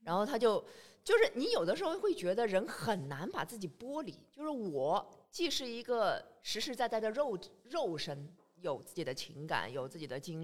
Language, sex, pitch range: Chinese, female, 165-245 Hz